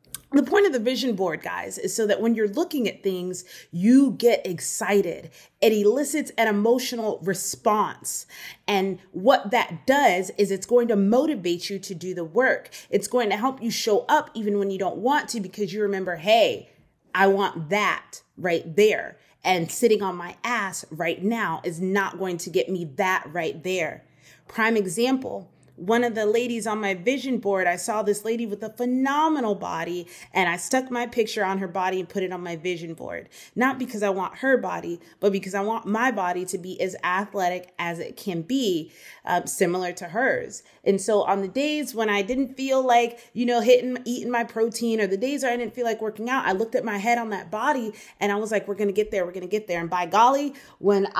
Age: 30-49